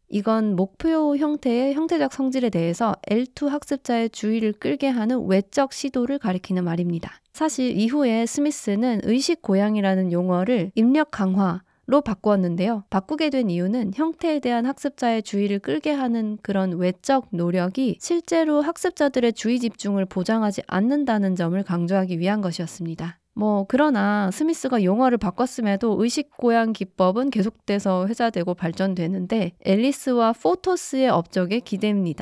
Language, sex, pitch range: Korean, female, 195-270 Hz